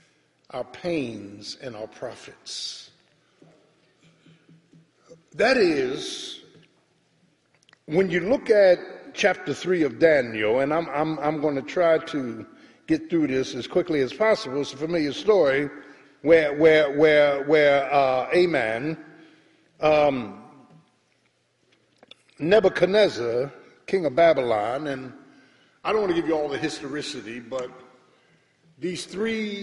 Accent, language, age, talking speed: American, English, 50-69, 120 wpm